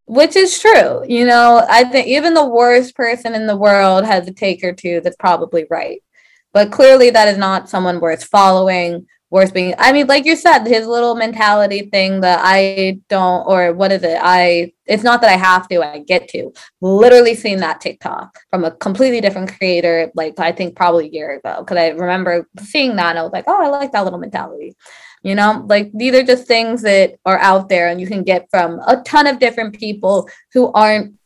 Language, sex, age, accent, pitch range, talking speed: English, female, 20-39, American, 180-240 Hz, 215 wpm